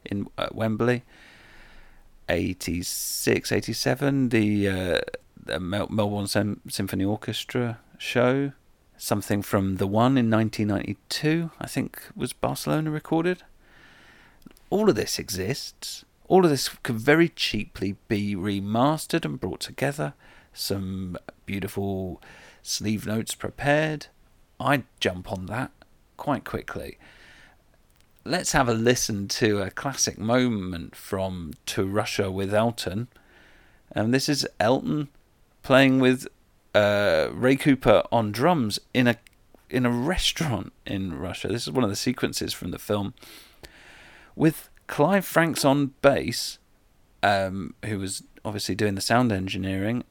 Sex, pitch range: male, 100-130 Hz